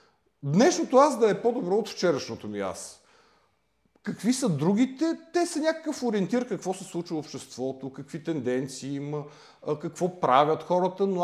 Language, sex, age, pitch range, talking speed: Bulgarian, male, 40-59, 140-195 Hz, 150 wpm